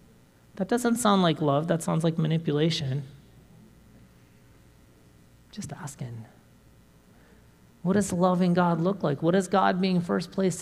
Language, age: English, 30-49